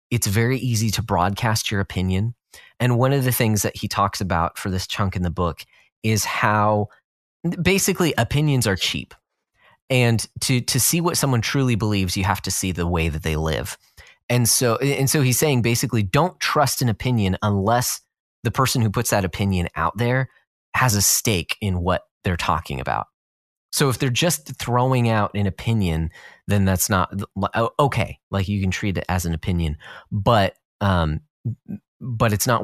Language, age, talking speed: English, 30-49, 180 wpm